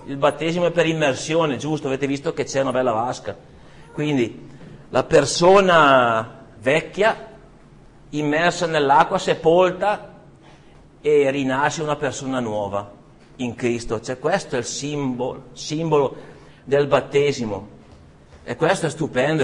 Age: 50-69